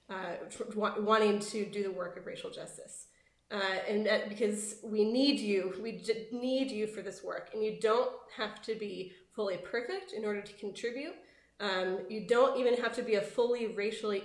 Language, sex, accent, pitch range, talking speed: English, female, American, 205-265 Hz, 185 wpm